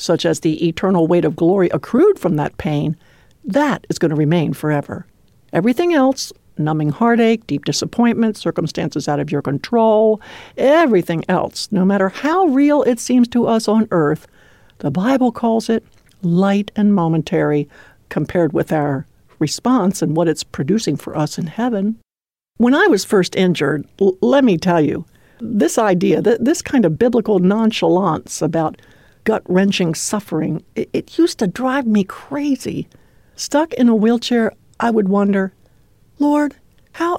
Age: 60-79